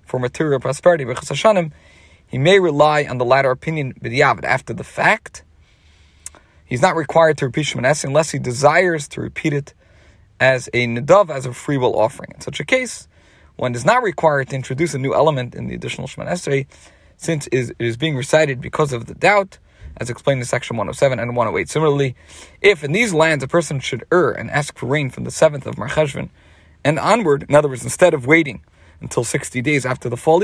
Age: 40-59